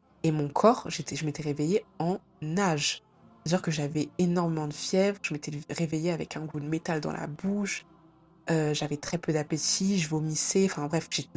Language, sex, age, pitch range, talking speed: French, female, 20-39, 150-180 Hz, 190 wpm